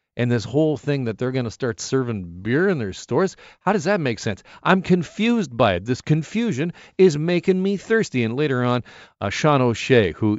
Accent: American